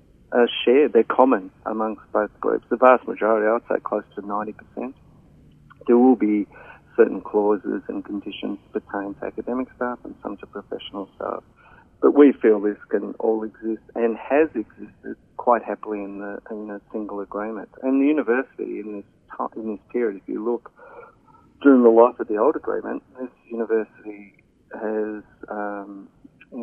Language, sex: English, male